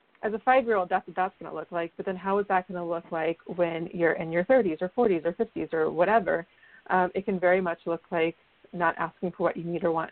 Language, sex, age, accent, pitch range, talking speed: English, female, 30-49, American, 175-210 Hz, 265 wpm